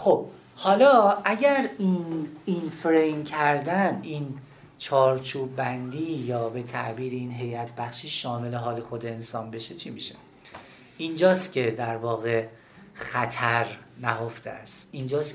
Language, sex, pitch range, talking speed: Persian, male, 120-175 Hz, 120 wpm